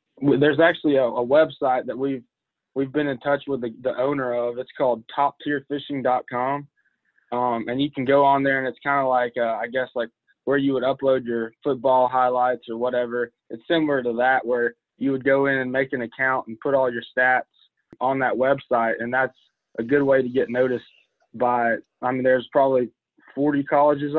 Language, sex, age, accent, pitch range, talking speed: English, male, 20-39, American, 120-140 Hz, 200 wpm